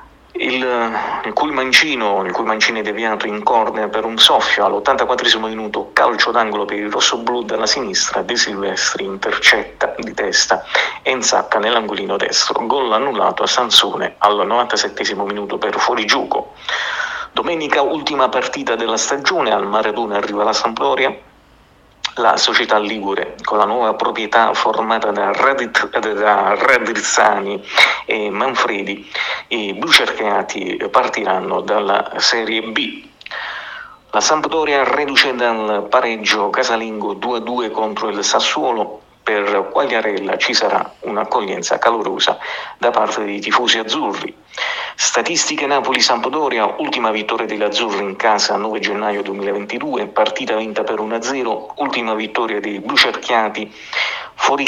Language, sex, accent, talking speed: Italian, male, native, 120 wpm